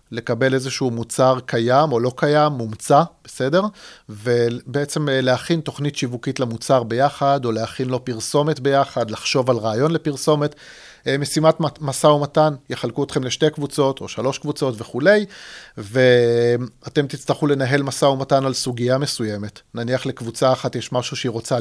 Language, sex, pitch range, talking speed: Hebrew, male, 120-145 Hz, 140 wpm